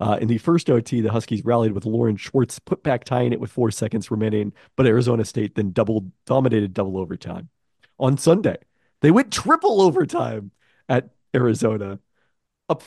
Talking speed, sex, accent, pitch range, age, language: 170 wpm, male, American, 105-130 Hz, 40-59, English